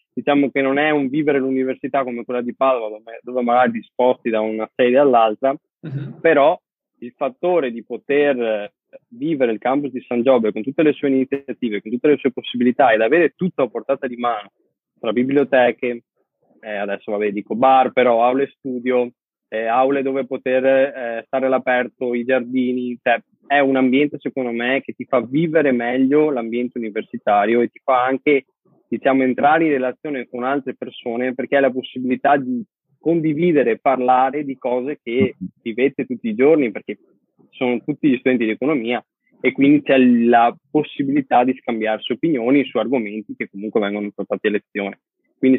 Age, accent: 20-39, native